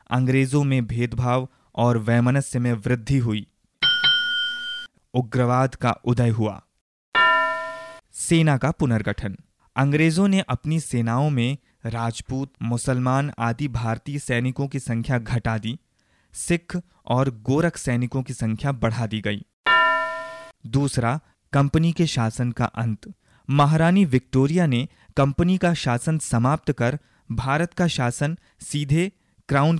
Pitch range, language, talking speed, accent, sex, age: 115-145 Hz, Hindi, 115 wpm, native, male, 20-39